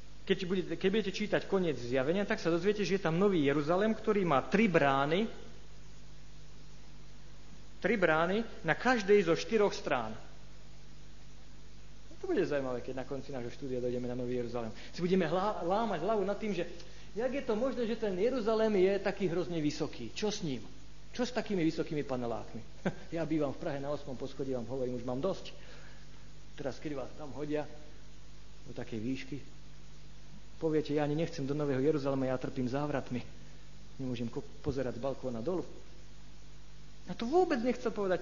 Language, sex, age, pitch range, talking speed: Slovak, male, 50-69, 130-195 Hz, 170 wpm